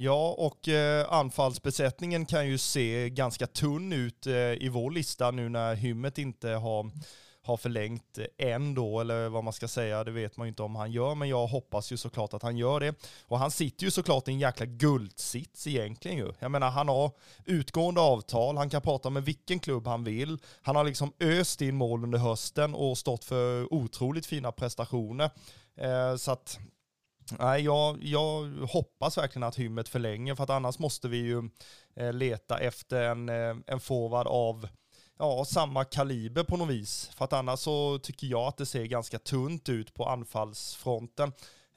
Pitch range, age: 120-140 Hz, 20-39